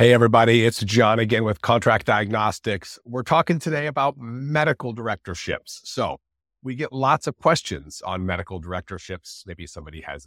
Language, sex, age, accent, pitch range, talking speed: English, male, 50-69, American, 90-115 Hz, 150 wpm